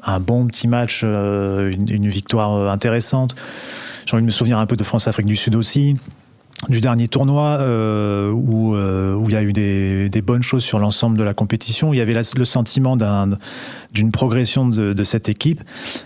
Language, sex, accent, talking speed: French, male, French, 170 wpm